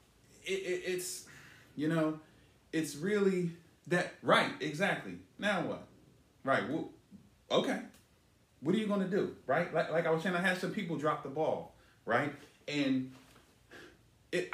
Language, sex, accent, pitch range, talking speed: English, male, American, 130-175 Hz, 150 wpm